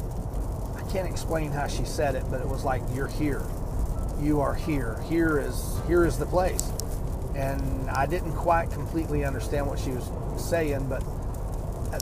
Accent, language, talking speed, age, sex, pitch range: American, English, 165 wpm, 40-59, male, 115-155 Hz